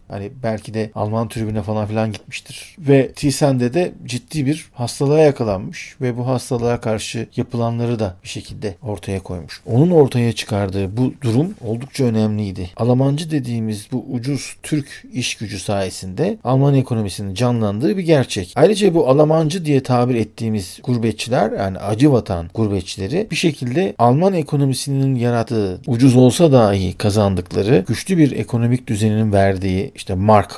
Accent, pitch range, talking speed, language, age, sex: native, 105-135 Hz, 140 wpm, Turkish, 40-59, male